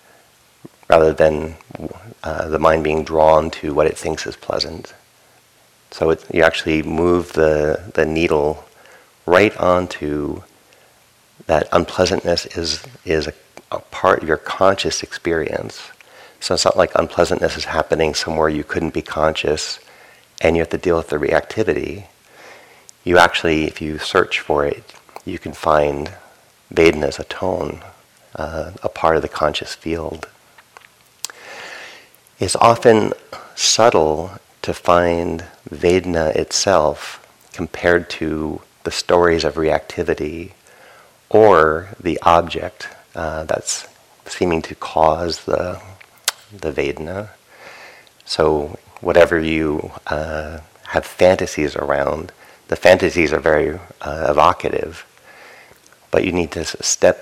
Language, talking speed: English, 120 wpm